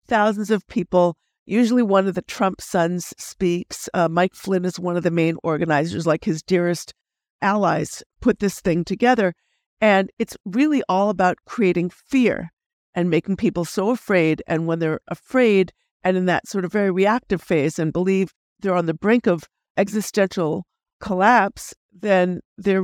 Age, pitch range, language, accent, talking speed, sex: 50-69, 170-210 Hz, English, American, 165 wpm, female